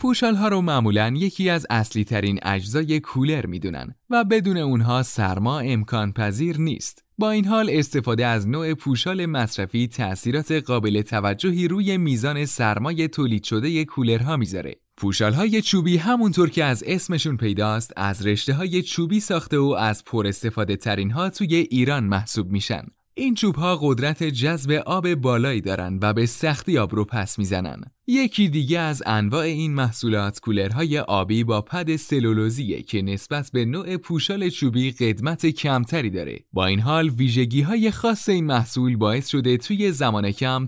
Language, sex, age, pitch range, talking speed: Persian, male, 20-39, 110-170 Hz, 160 wpm